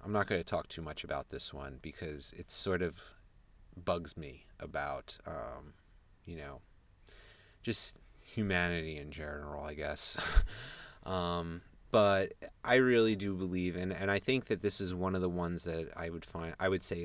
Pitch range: 80-95 Hz